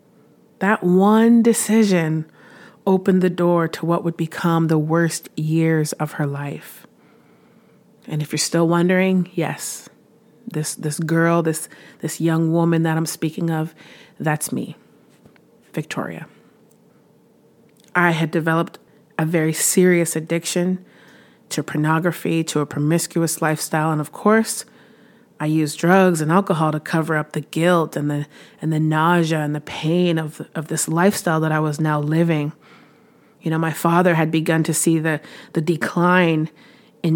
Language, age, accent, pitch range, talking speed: English, 30-49, American, 155-180 Hz, 145 wpm